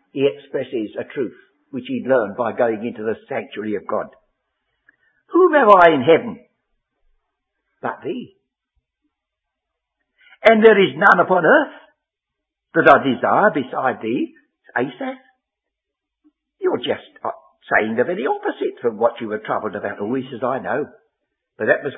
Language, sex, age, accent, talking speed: English, male, 60-79, British, 145 wpm